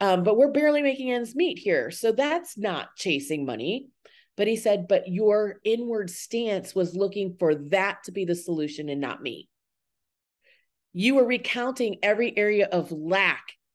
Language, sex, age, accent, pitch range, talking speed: English, female, 30-49, American, 175-230 Hz, 165 wpm